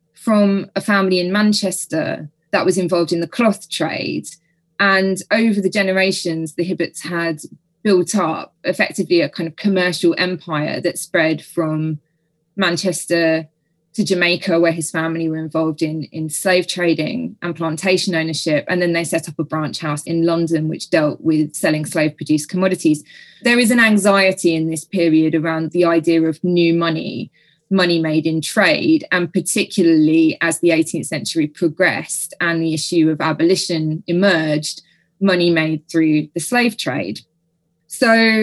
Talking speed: 155 wpm